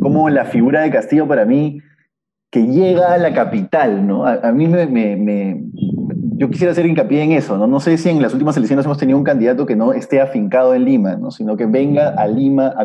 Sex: male